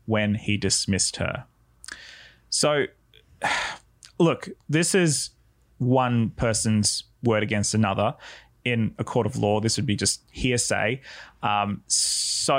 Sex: male